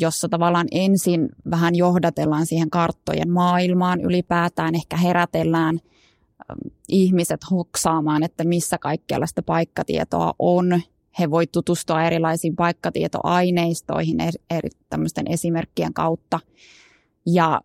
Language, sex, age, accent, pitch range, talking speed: Finnish, female, 20-39, native, 165-180 Hz, 100 wpm